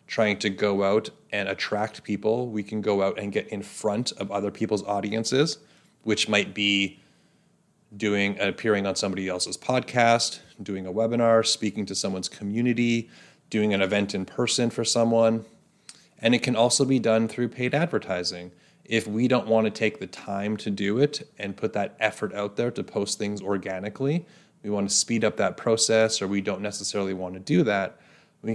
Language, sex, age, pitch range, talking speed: English, male, 30-49, 100-120 Hz, 185 wpm